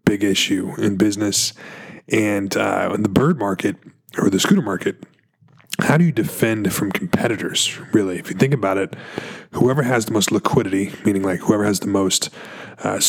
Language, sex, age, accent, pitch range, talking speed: English, male, 20-39, American, 95-110 Hz, 175 wpm